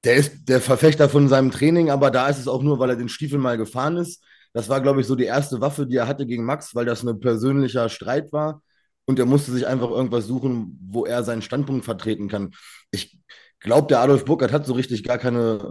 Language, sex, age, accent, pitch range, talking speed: German, male, 20-39, German, 115-140 Hz, 235 wpm